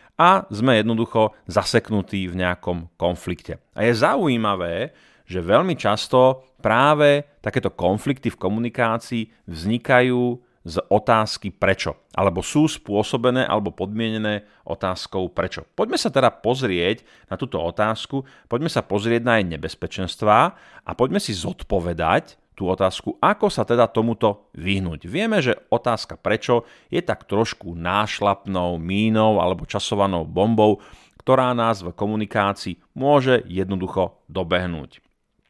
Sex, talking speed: male, 120 wpm